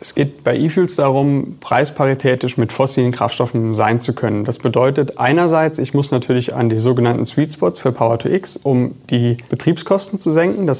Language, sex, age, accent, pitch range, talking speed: German, male, 30-49, German, 120-145 Hz, 170 wpm